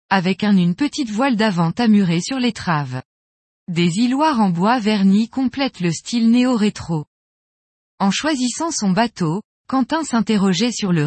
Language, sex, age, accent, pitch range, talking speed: French, female, 20-39, French, 175-245 Hz, 140 wpm